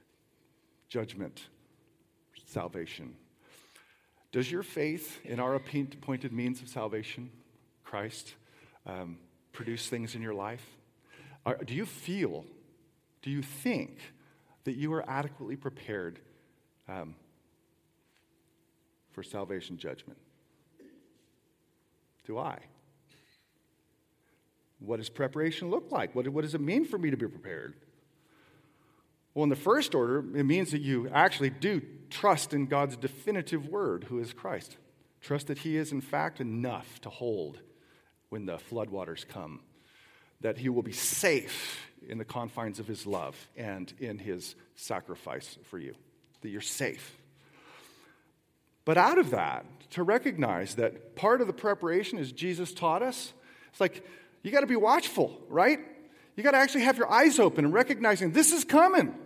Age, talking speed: 50-69, 140 wpm